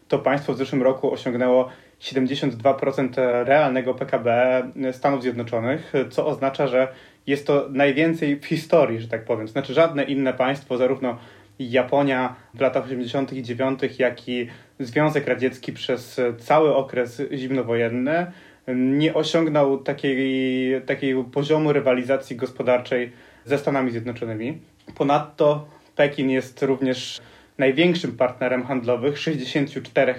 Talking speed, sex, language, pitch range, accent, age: 115 wpm, male, Polish, 125-140 Hz, native, 30-49